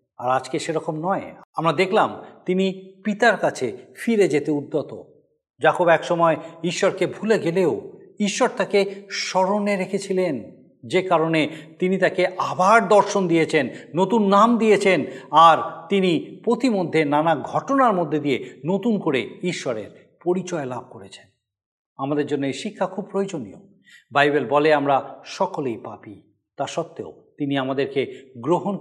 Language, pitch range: Bengali, 145-195 Hz